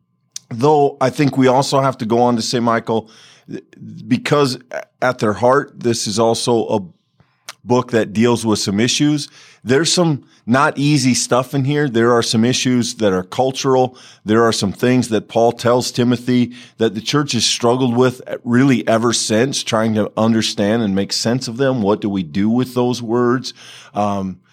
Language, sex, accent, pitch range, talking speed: English, male, American, 105-125 Hz, 180 wpm